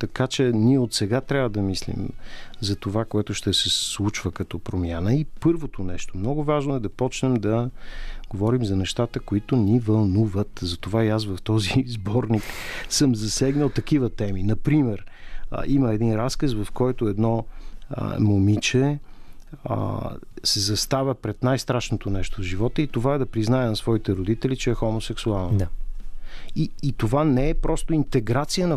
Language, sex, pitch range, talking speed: Bulgarian, male, 105-135 Hz, 155 wpm